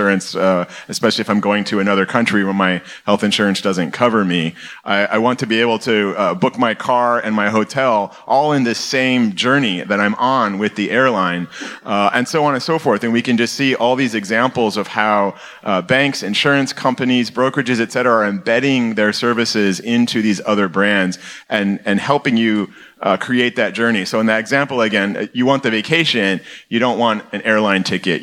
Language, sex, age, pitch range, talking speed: English, male, 30-49, 100-120 Hz, 200 wpm